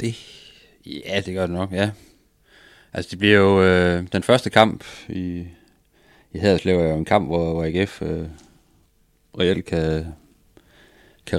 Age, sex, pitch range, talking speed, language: 30-49, male, 80-95 Hz, 155 wpm, Danish